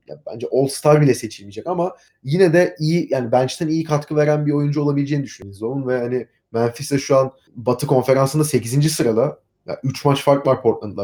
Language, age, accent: Turkish, 30-49, native